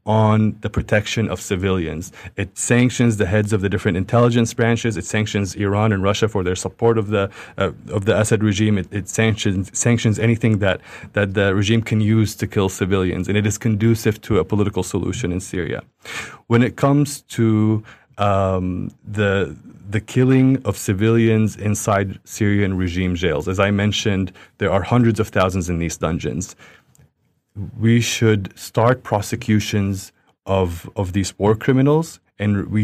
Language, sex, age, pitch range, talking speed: English, male, 30-49, 95-115 Hz, 165 wpm